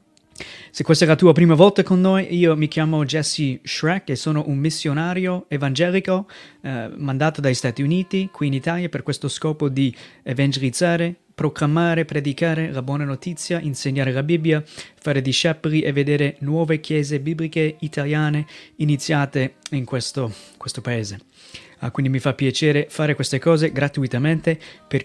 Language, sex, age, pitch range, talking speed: Italian, male, 30-49, 135-160 Hz, 150 wpm